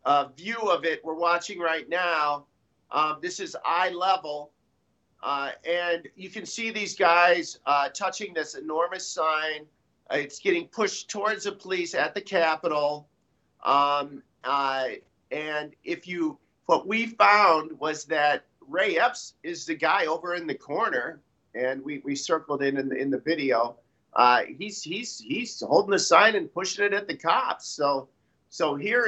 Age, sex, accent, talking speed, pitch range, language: 50-69, male, American, 165 wpm, 150-205 Hz, English